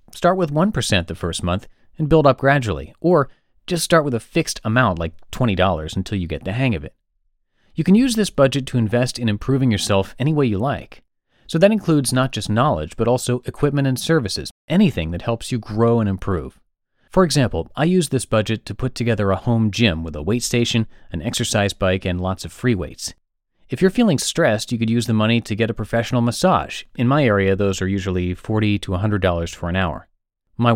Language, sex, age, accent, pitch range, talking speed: English, male, 30-49, American, 95-140 Hz, 215 wpm